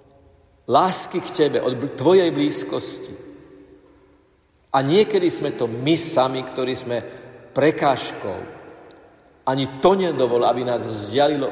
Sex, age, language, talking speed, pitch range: male, 50-69, Slovak, 110 wpm, 120-155 Hz